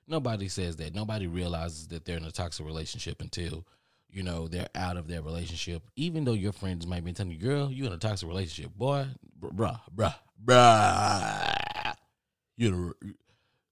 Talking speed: 160 wpm